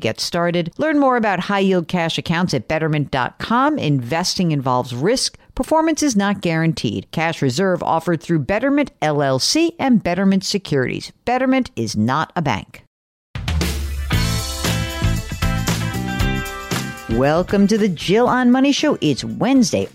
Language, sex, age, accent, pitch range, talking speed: English, female, 50-69, American, 140-210 Hz, 125 wpm